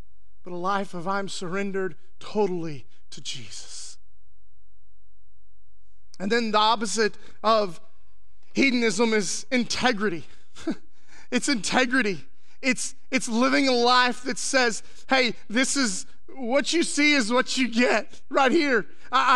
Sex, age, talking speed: male, 30-49, 120 wpm